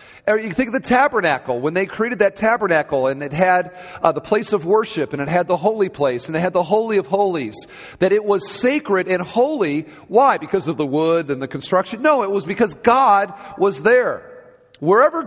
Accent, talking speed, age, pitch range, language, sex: American, 210 wpm, 40-59, 160-215 Hz, English, male